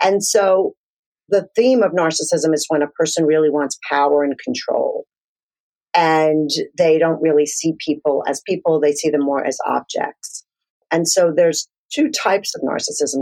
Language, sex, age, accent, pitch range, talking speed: English, female, 40-59, American, 145-195 Hz, 165 wpm